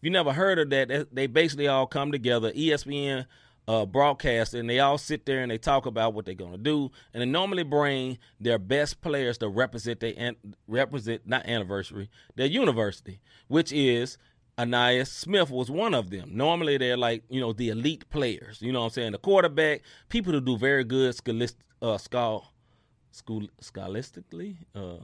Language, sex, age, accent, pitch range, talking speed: English, male, 30-49, American, 115-150 Hz, 180 wpm